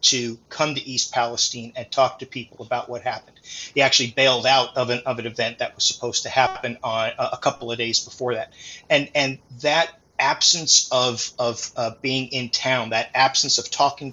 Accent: American